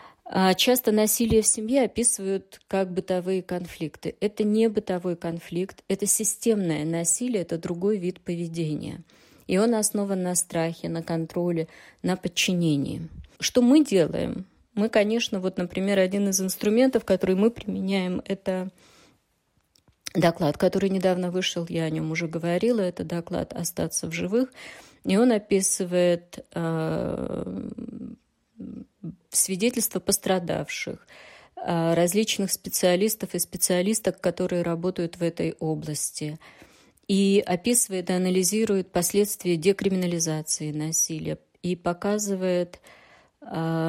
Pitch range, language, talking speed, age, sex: 170-205 Hz, Russian, 110 wpm, 30-49, female